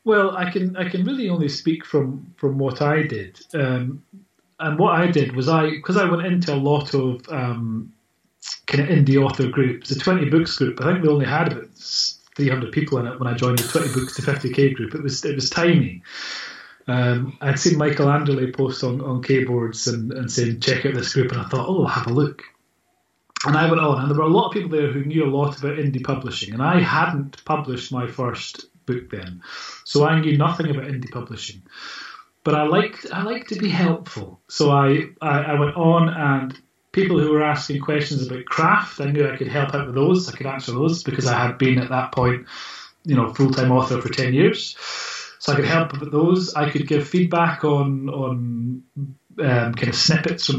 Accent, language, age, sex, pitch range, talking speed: British, English, 30-49, male, 130-160 Hz, 220 wpm